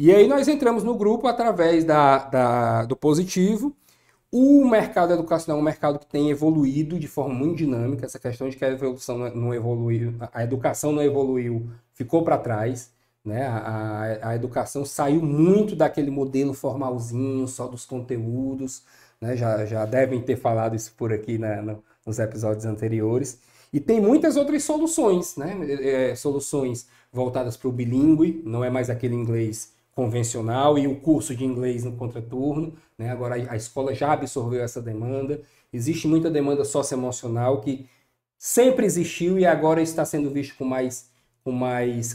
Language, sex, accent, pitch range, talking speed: Portuguese, male, Brazilian, 120-155 Hz, 160 wpm